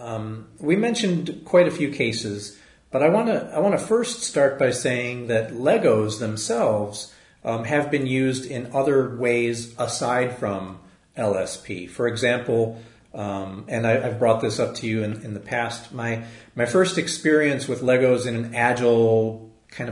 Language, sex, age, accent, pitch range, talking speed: English, male, 40-59, American, 110-130 Hz, 170 wpm